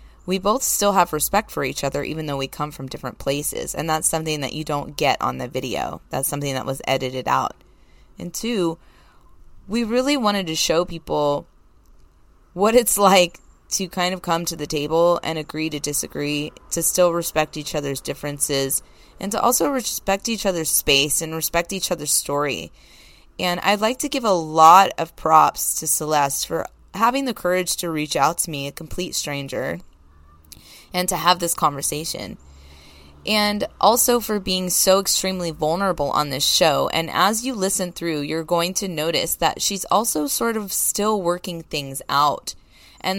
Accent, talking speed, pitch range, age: American, 180 wpm, 145-190 Hz, 20-39